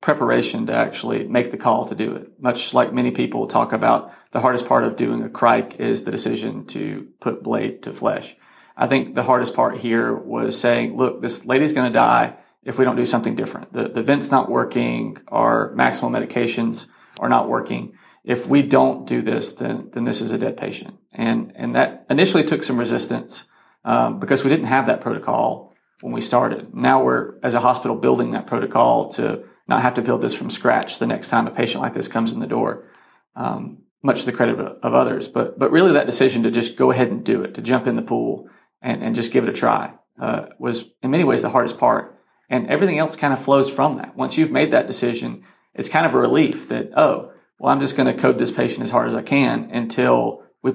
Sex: male